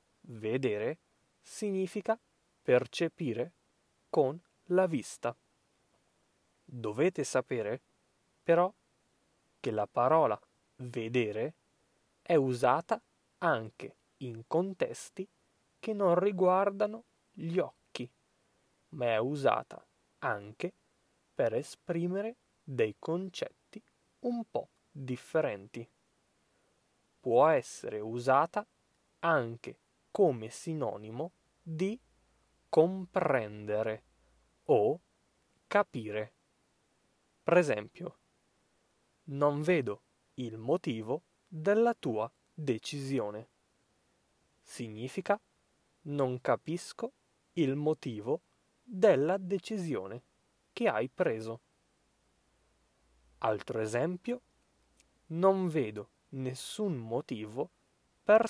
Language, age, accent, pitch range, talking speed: Italian, 20-39, native, 120-190 Hz, 70 wpm